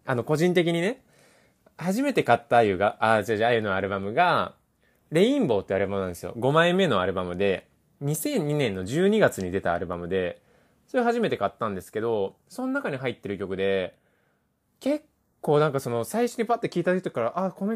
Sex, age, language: male, 20-39, Japanese